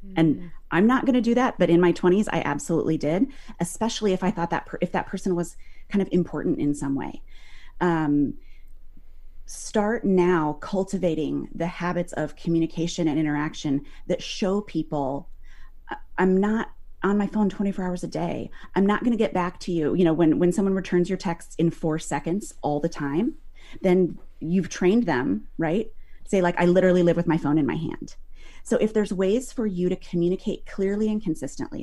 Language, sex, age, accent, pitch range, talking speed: English, female, 30-49, American, 150-195 Hz, 190 wpm